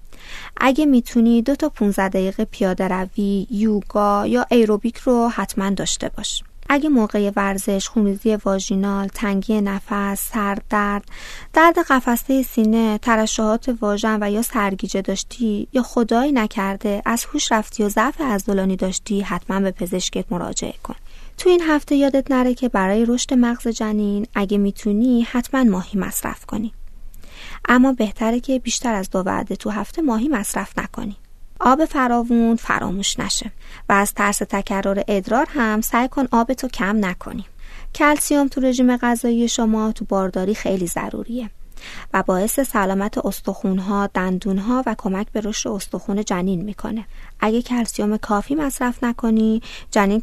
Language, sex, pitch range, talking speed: Persian, female, 200-245 Hz, 140 wpm